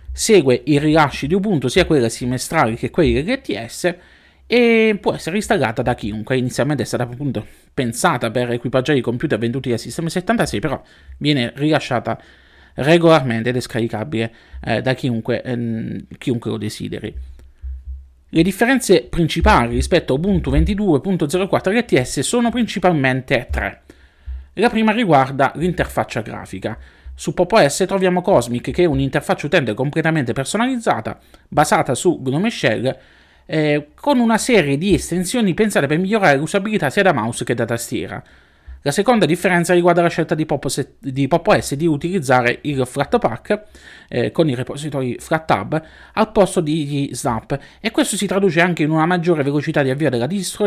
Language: Italian